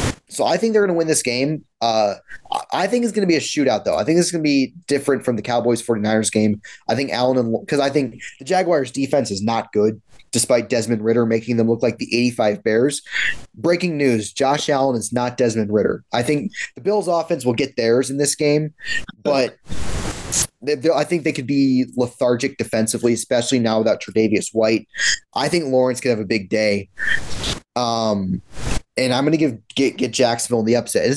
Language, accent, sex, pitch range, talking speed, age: English, American, male, 115-145 Hz, 200 wpm, 20-39